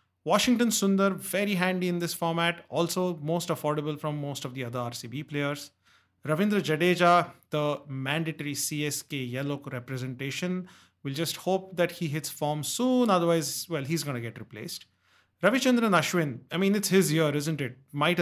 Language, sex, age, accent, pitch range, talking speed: English, male, 30-49, Indian, 135-175 Hz, 160 wpm